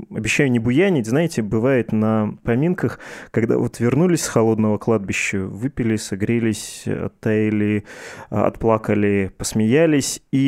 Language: Russian